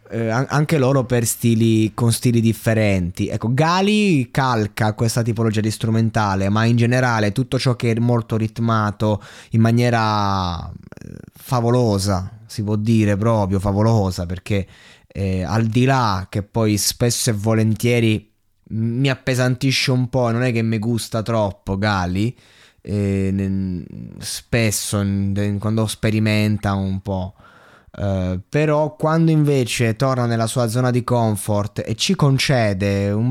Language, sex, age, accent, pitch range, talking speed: Italian, male, 20-39, native, 105-125 Hz, 125 wpm